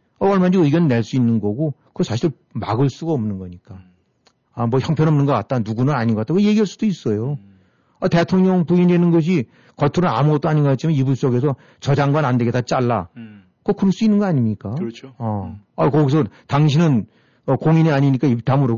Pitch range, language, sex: 115-155 Hz, Korean, male